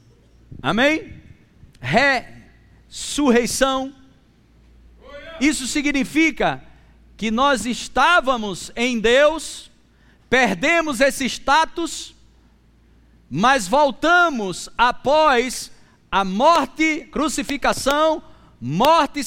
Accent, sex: Brazilian, male